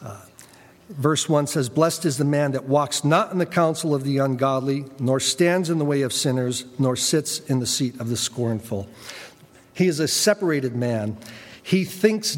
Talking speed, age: 185 wpm, 50-69